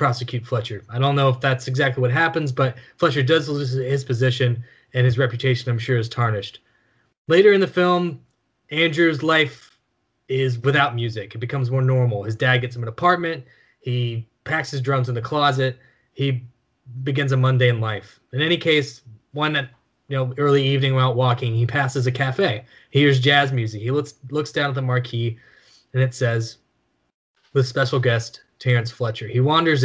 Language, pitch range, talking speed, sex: English, 120-135 Hz, 185 wpm, male